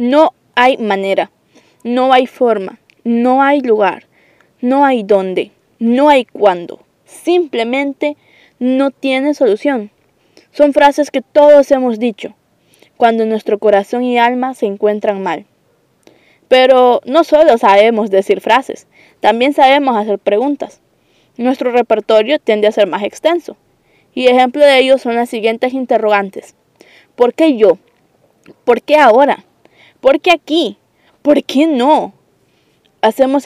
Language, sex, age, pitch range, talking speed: Spanish, female, 10-29, 220-280 Hz, 125 wpm